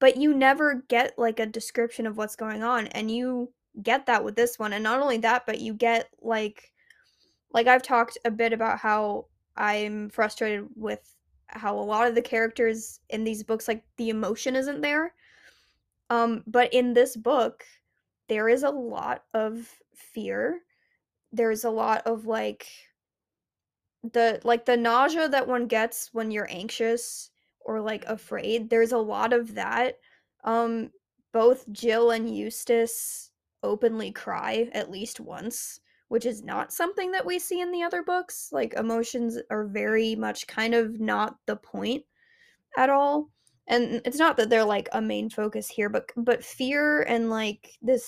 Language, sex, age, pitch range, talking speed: English, female, 10-29, 220-250 Hz, 165 wpm